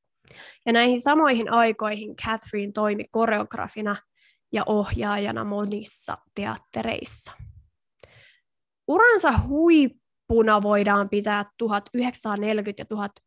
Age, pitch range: 20-39, 210-250 Hz